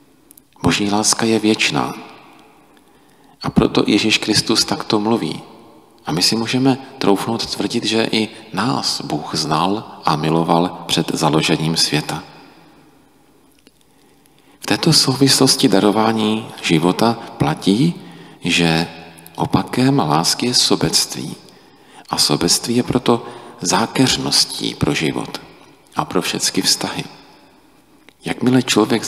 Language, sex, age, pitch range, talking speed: Czech, male, 40-59, 90-125 Hz, 105 wpm